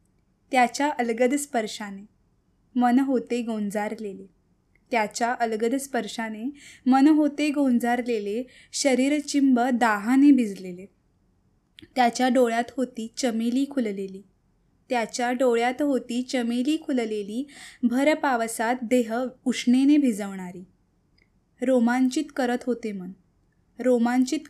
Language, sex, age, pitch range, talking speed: Hindi, female, 20-39, 235-280 Hz, 80 wpm